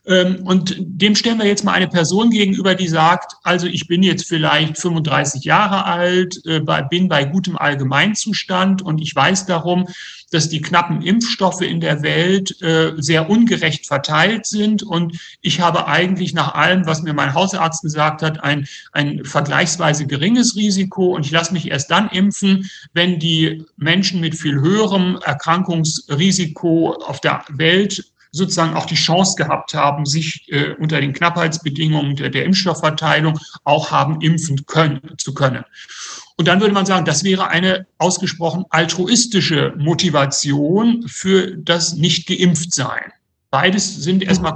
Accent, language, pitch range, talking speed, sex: German, German, 155-185 Hz, 145 wpm, male